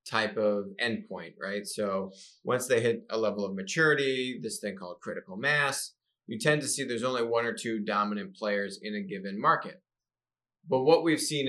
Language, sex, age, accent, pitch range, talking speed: English, male, 30-49, American, 100-130 Hz, 190 wpm